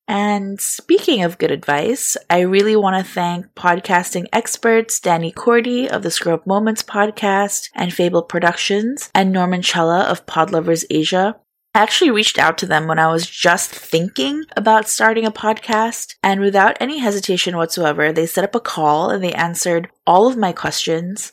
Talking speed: 170 wpm